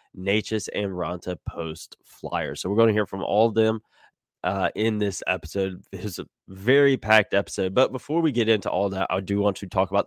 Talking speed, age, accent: 215 wpm, 10-29, American